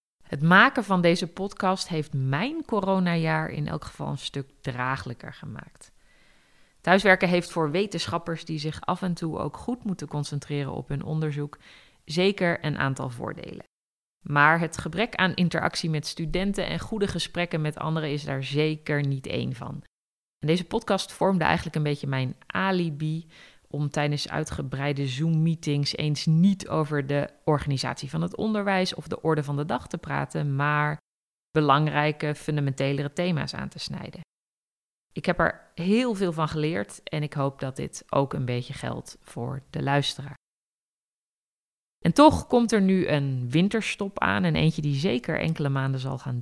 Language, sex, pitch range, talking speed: Dutch, female, 140-175 Hz, 160 wpm